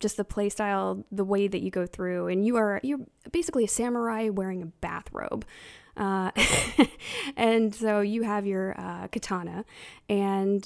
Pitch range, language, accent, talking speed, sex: 185-215 Hz, English, American, 165 wpm, female